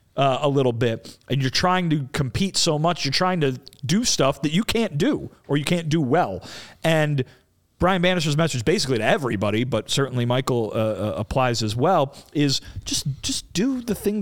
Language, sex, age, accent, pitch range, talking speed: English, male, 40-59, American, 130-170 Hz, 195 wpm